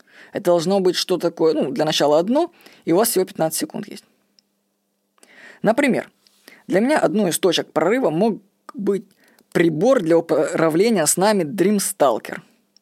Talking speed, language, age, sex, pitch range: 150 wpm, Russian, 20-39, female, 170-240 Hz